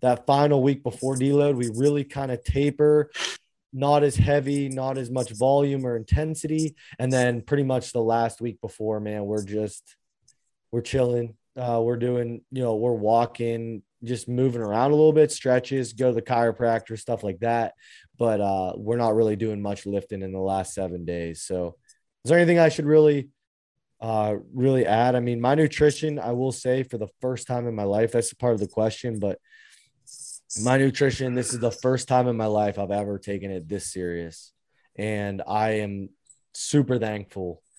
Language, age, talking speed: English, 20-39, 185 wpm